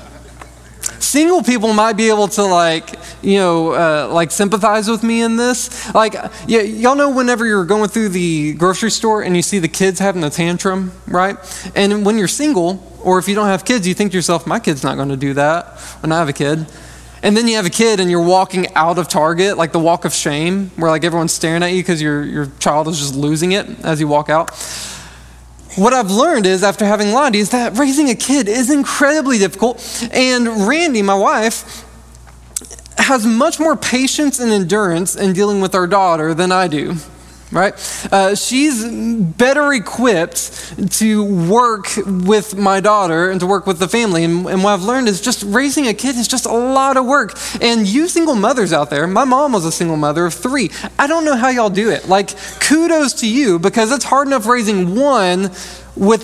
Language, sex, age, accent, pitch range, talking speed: English, male, 20-39, American, 175-230 Hz, 205 wpm